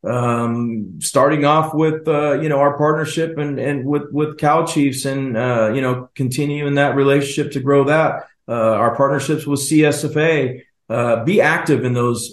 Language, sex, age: English, male, 40-59